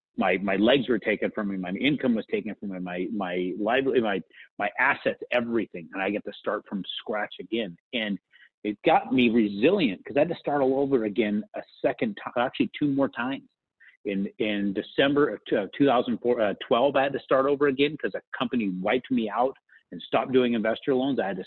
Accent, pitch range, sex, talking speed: American, 105-145 Hz, male, 210 wpm